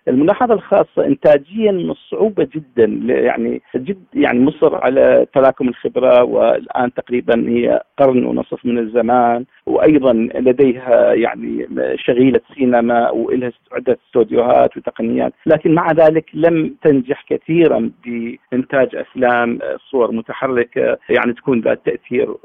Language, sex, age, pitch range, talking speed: Arabic, male, 50-69, 130-195 Hz, 110 wpm